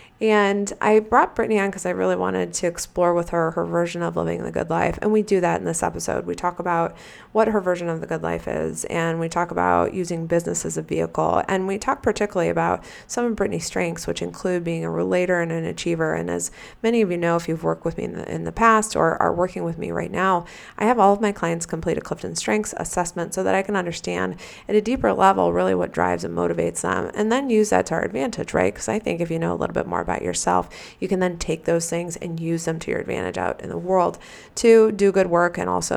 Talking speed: 260 wpm